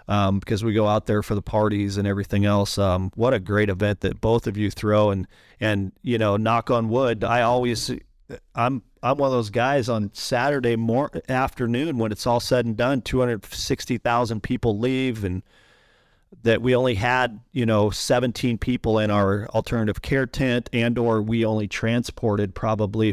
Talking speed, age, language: 180 wpm, 40-59, English